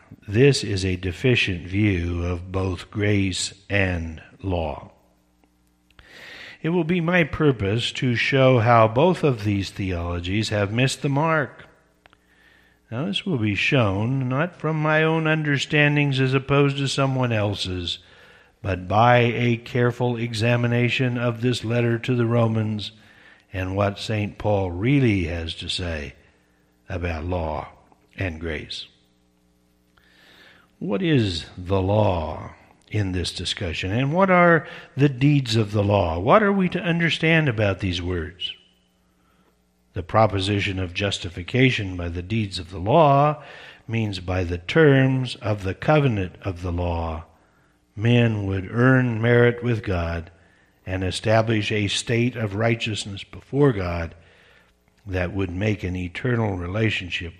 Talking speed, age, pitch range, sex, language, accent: 130 wpm, 60-79, 90-125 Hz, male, English, American